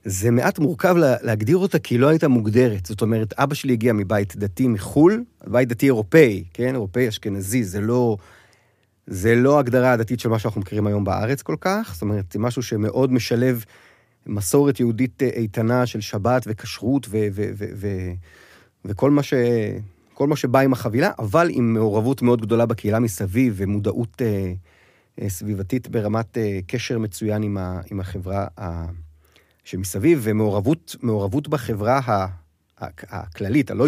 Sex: male